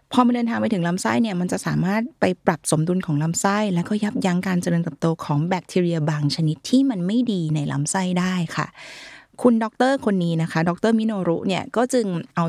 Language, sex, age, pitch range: Thai, female, 20-39, 165-220 Hz